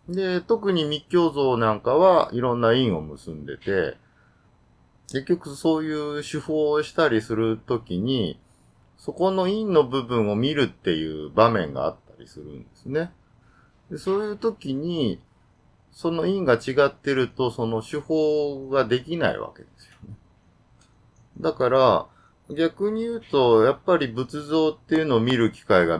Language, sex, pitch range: Japanese, male, 110-160 Hz